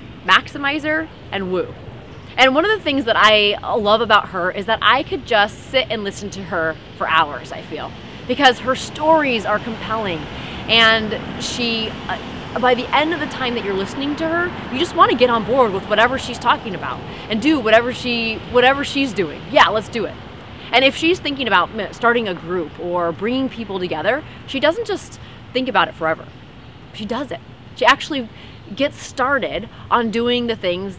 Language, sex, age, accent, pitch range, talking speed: English, female, 30-49, American, 180-250 Hz, 190 wpm